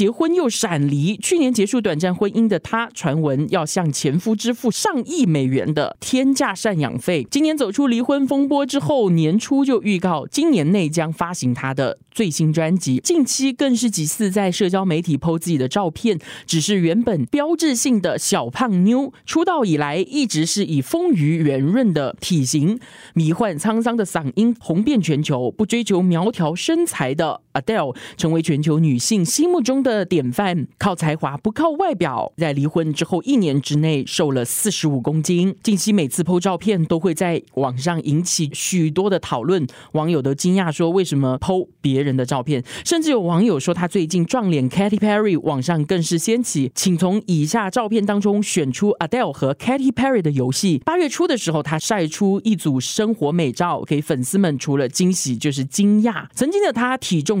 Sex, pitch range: male, 155-225 Hz